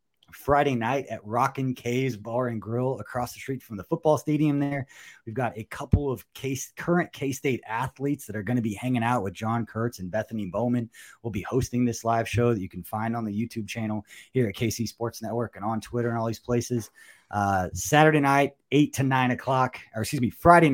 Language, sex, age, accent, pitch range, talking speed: English, male, 20-39, American, 105-130 Hz, 220 wpm